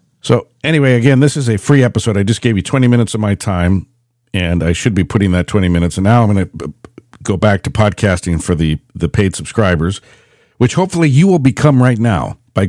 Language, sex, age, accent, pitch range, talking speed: English, male, 50-69, American, 90-120 Hz, 220 wpm